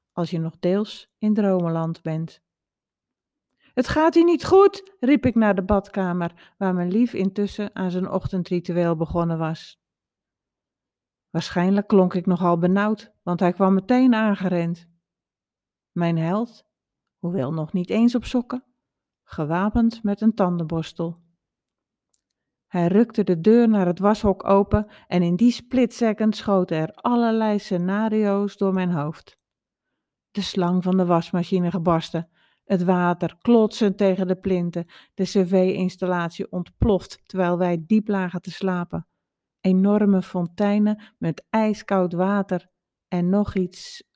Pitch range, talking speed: 175-210 Hz, 130 wpm